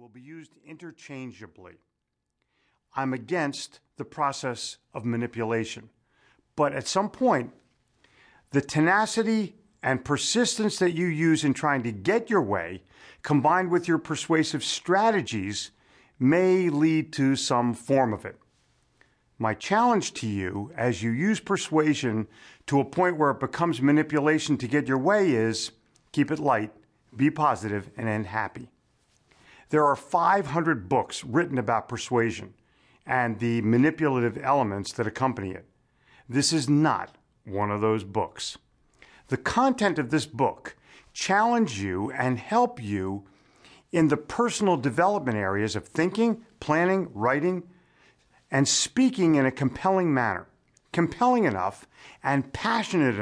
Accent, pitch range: American, 115-170 Hz